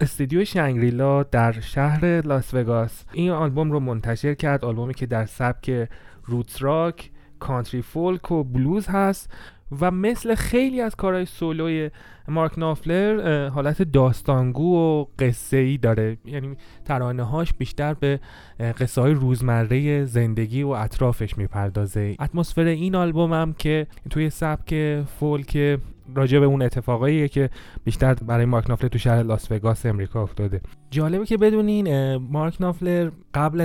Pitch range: 120-155 Hz